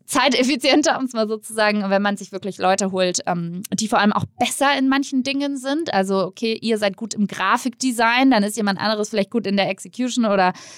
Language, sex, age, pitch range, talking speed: German, female, 20-39, 185-220 Hz, 210 wpm